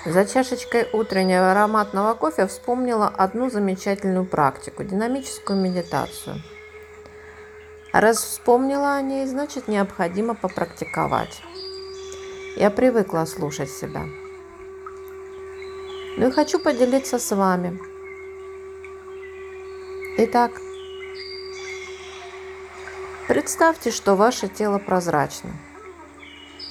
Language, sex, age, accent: Russian, female, 40-59, native